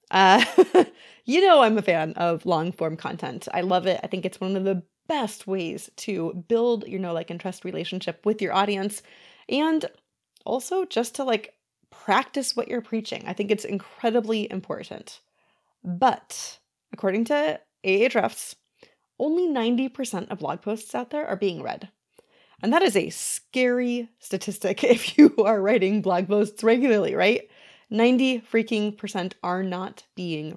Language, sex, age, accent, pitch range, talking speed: English, female, 30-49, American, 185-235 Hz, 155 wpm